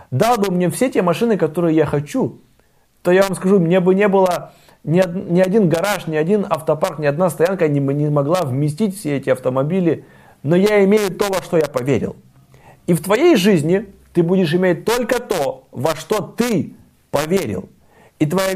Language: Russian